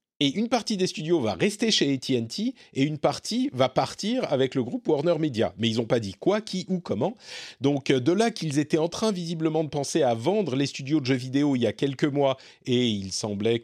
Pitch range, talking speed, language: 110-155 Hz, 235 wpm, French